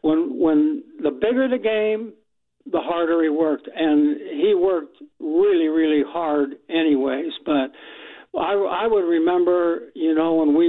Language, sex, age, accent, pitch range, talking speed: English, male, 60-79, American, 155-220 Hz, 145 wpm